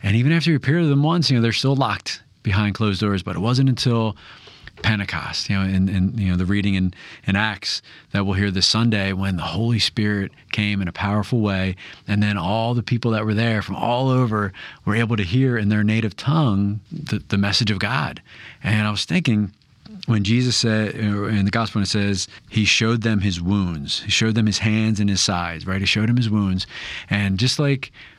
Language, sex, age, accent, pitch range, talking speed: English, male, 30-49, American, 100-120 Hz, 225 wpm